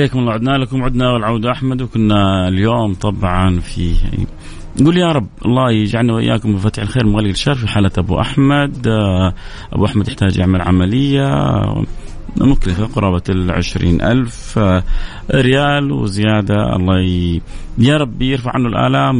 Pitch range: 95-115 Hz